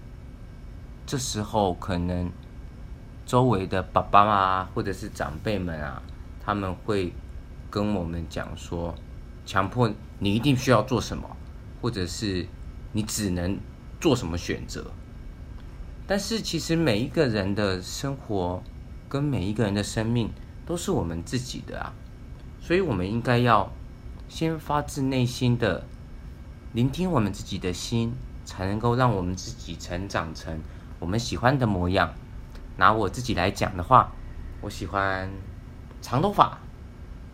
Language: Chinese